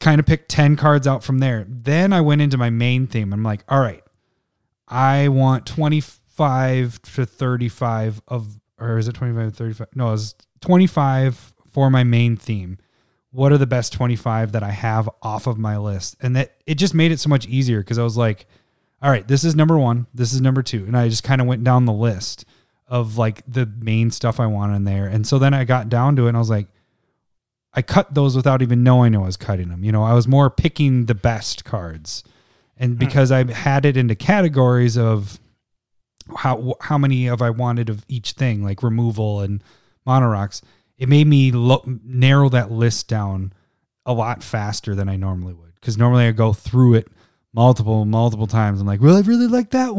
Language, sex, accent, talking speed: English, male, American, 210 wpm